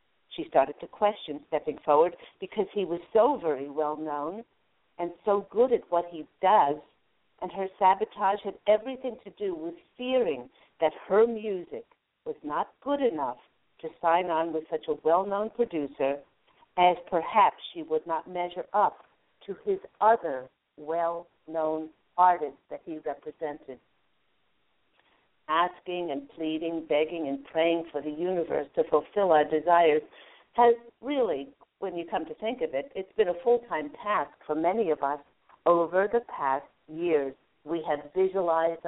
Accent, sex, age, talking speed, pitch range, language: American, female, 60-79, 150 wpm, 160-205 Hz, English